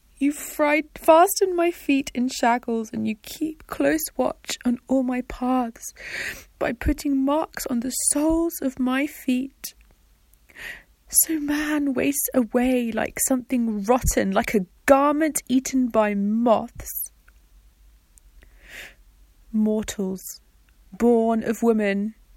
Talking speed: 115 wpm